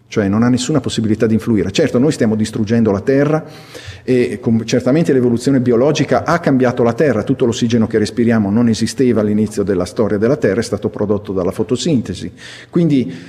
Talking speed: 170 wpm